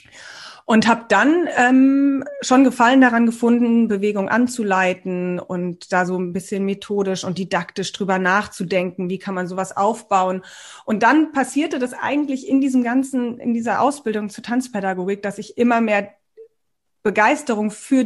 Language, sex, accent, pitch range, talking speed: German, female, German, 190-235 Hz, 145 wpm